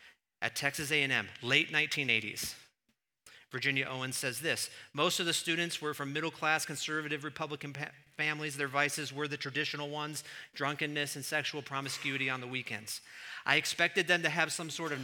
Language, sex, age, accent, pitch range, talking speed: English, male, 40-59, American, 140-200 Hz, 165 wpm